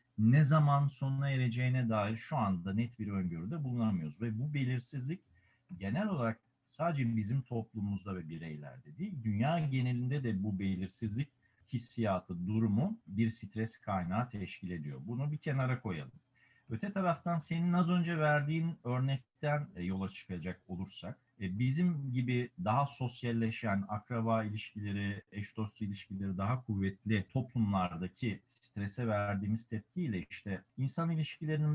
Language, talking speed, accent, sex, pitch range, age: Turkish, 125 wpm, native, male, 100-130 Hz, 50-69